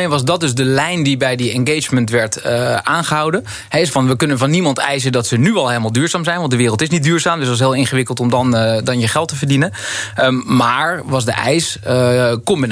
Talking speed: 250 wpm